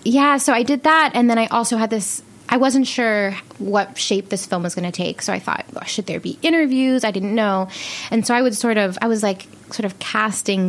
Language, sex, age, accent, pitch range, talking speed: English, female, 20-39, American, 190-235 Hz, 245 wpm